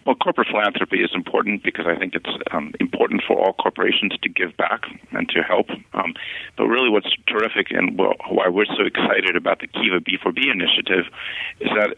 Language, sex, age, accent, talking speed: English, male, 50-69, American, 190 wpm